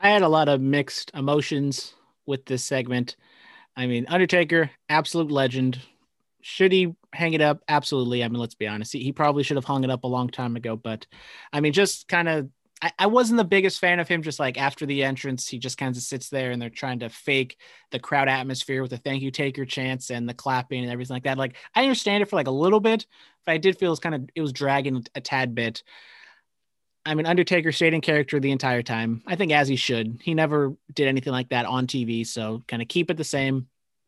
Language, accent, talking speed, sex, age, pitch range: English, American, 240 wpm, male, 30-49, 125-160 Hz